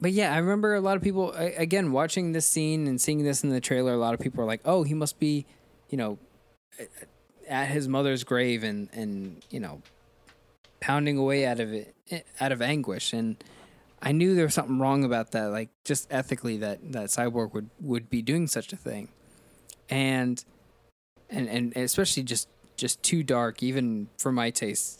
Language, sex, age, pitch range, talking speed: English, male, 20-39, 120-150 Hz, 190 wpm